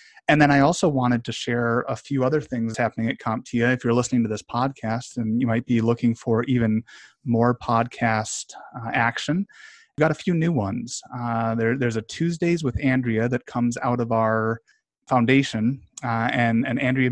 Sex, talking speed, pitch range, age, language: male, 185 wpm, 115-130 Hz, 30-49, English